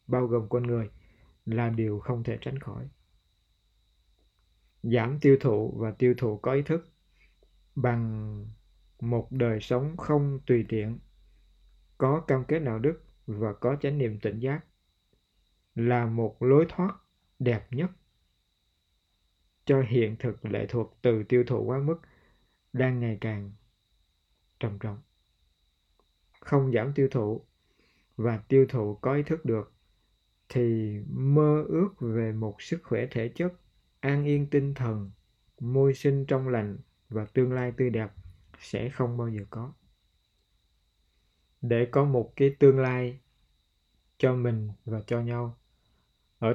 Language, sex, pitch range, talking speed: Vietnamese, male, 105-135 Hz, 140 wpm